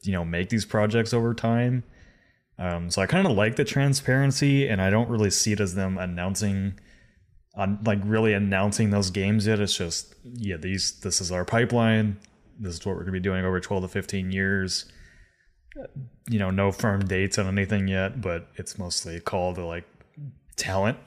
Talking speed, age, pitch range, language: 190 wpm, 20-39, 90-110 Hz, English